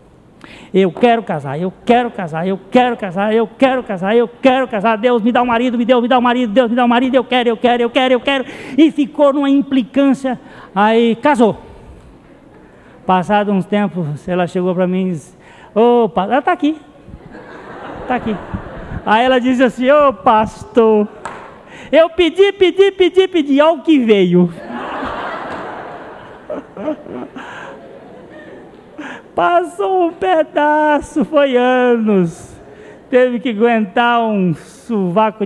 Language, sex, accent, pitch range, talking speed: Portuguese, male, Brazilian, 195-265 Hz, 150 wpm